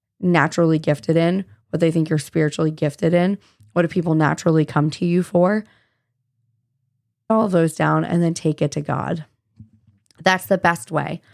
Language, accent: English, American